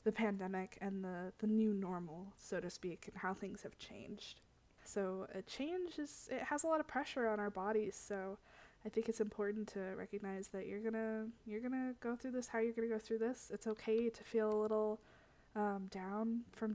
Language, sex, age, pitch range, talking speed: English, female, 20-39, 200-230 Hz, 210 wpm